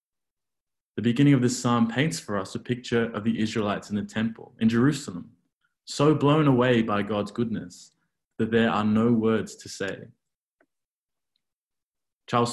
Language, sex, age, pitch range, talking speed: English, male, 20-39, 105-125 Hz, 155 wpm